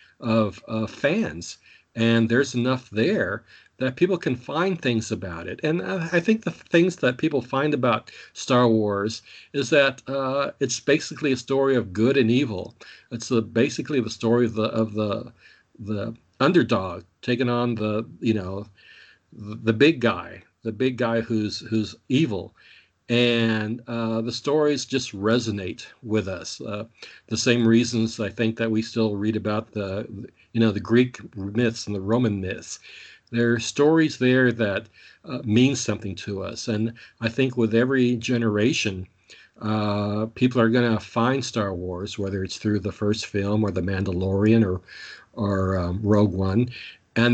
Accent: American